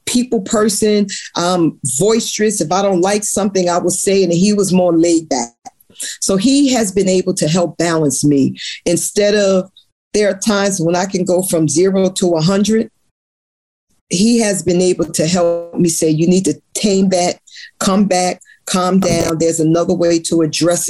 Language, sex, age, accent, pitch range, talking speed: English, female, 40-59, American, 170-215 Hz, 180 wpm